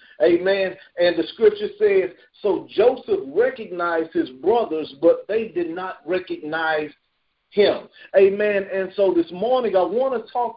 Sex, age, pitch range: male, 50-69, 180-290 Hz